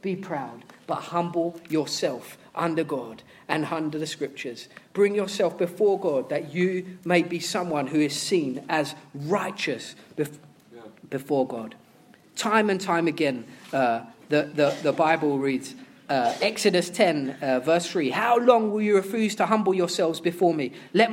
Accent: British